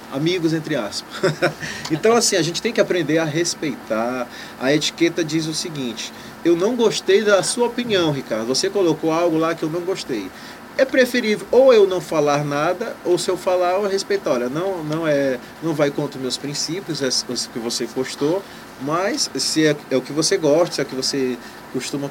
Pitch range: 135-185 Hz